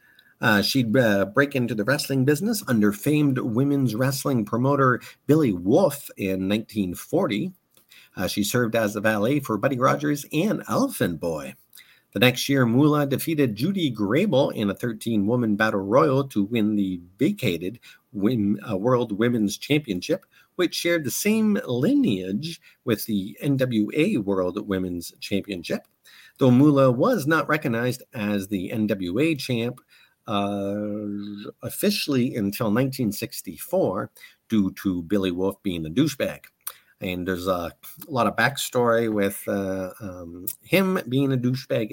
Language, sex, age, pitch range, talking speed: English, male, 50-69, 100-150 Hz, 130 wpm